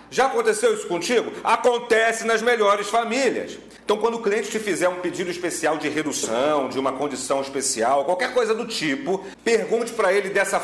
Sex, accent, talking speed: male, Brazilian, 175 wpm